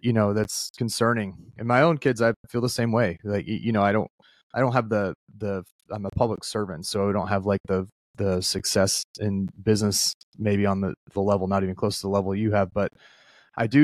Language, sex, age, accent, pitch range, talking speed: English, male, 30-49, American, 95-110 Hz, 230 wpm